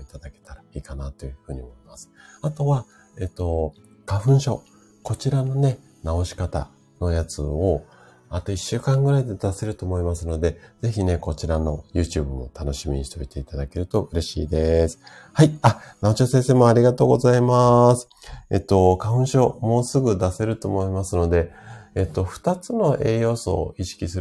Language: Japanese